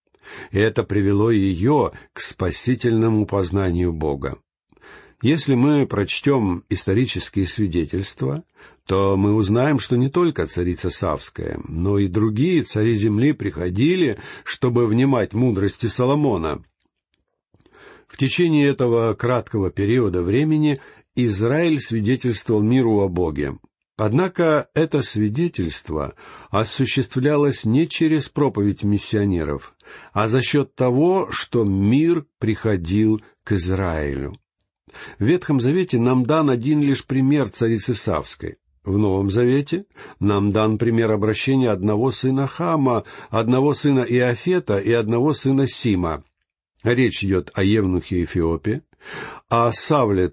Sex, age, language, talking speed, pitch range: male, 50-69, Russian, 110 wpm, 100-135 Hz